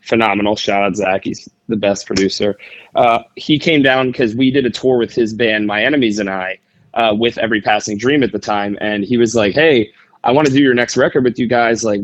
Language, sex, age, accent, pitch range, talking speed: English, male, 20-39, American, 105-125 Hz, 240 wpm